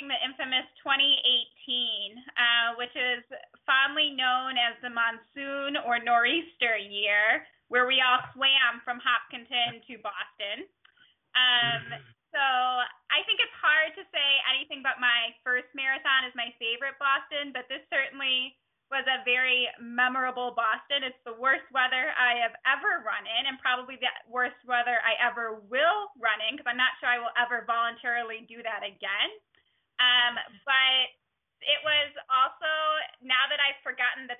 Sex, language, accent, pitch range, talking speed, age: female, English, American, 240-275 Hz, 150 wpm, 10-29